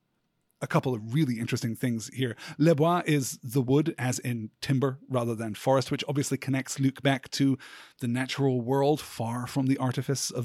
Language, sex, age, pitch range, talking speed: English, male, 30-49, 125-155 Hz, 185 wpm